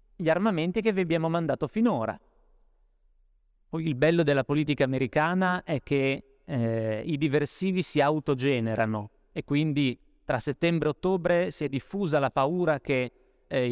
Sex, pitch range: male, 125-165 Hz